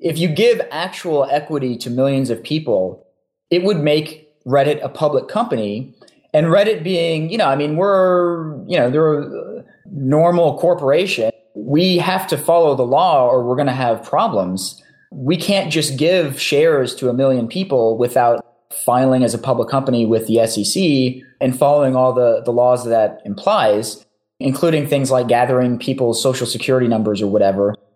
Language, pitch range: English, 115-155 Hz